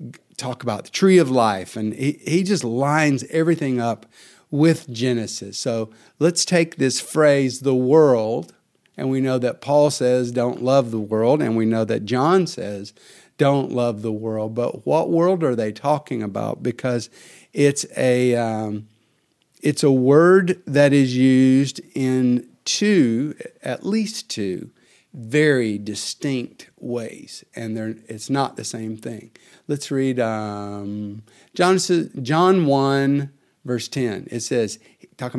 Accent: American